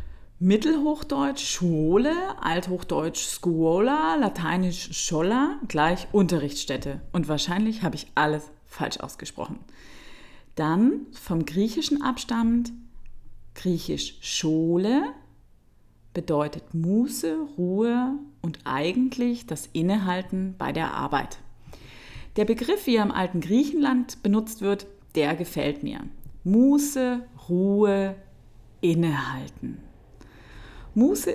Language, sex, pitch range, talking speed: German, female, 150-225 Hz, 90 wpm